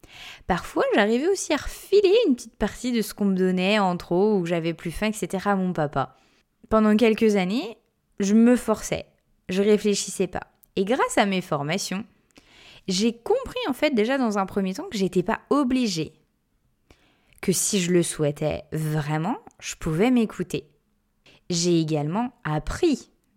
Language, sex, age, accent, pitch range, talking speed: French, female, 20-39, French, 175-235 Hz, 160 wpm